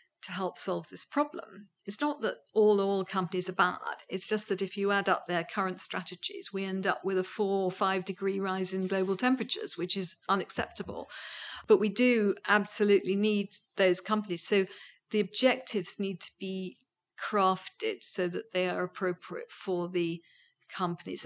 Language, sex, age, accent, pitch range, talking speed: English, female, 50-69, British, 180-205 Hz, 170 wpm